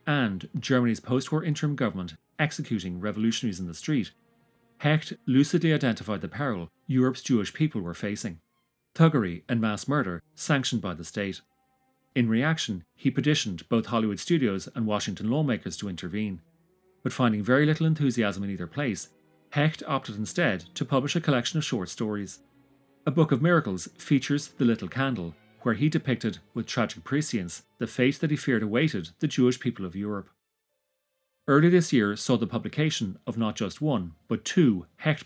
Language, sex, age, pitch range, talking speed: English, male, 40-59, 115-180 Hz, 165 wpm